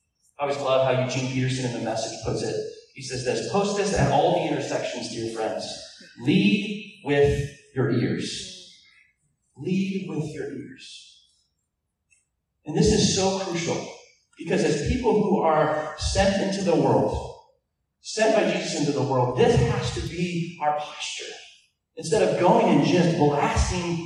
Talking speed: 155 wpm